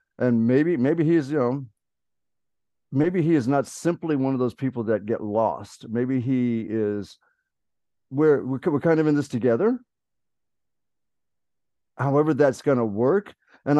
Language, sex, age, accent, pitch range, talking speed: English, male, 50-69, American, 110-145 Hz, 150 wpm